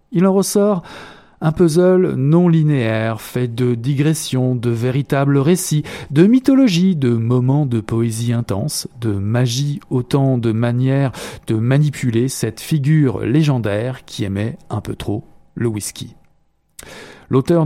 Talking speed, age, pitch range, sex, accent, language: 130 wpm, 40-59, 120-160 Hz, male, French, French